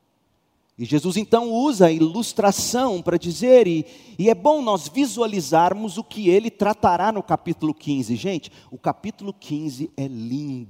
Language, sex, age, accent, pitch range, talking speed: Portuguese, male, 40-59, Brazilian, 140-200 Hz, 150 wpm